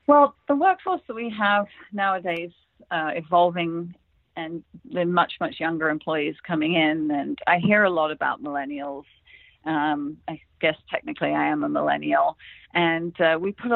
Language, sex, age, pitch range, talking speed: English, female, 40-59, 160-200 Hz, 155 wpm